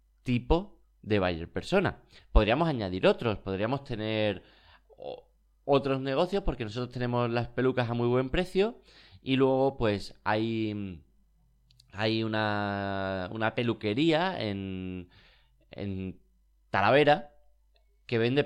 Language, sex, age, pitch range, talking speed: Spanish, male, 30-49, 100-135 Hz, 105 wpm